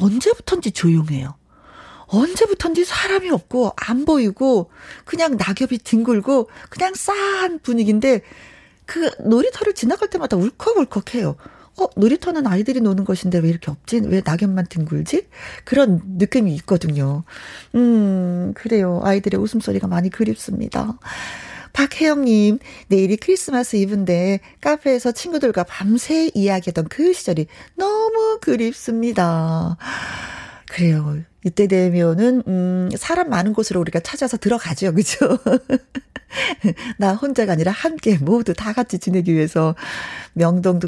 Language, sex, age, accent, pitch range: Korean, female, 40-59, native, 180-260 Hz